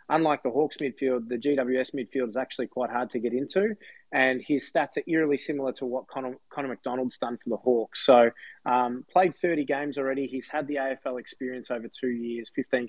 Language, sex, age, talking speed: English, male, 20-39, 200 wpm